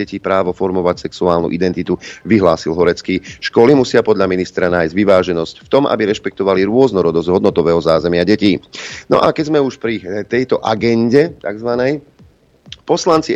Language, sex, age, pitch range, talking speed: Slovak, male, 40-59, 90-120 Hz, 135 wpm